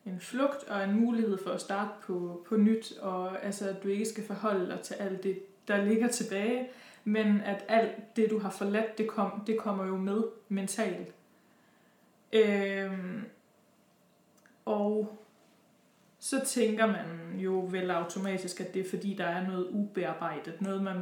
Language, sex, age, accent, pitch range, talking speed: Danish, female, 20-39, native, 195-220 Hz, 155 wpm